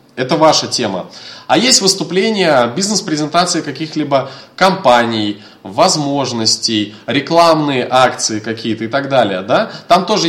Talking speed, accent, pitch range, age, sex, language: 105 wpm, native, 125-175 Hz, 20-39, male, Russian